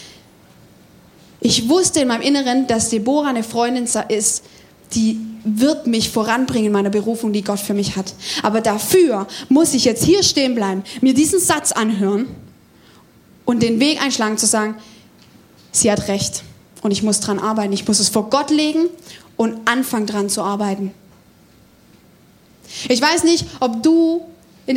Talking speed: 155 wpm